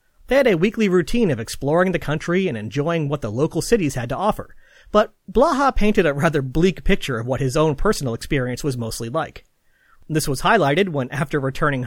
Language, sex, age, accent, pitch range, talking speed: English, male, 40-59, American, 135-205 Hz, 200 wpm